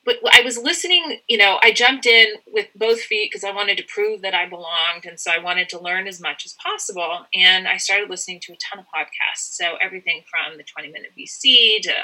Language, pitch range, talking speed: English, 180-235 Hz, 230 wpm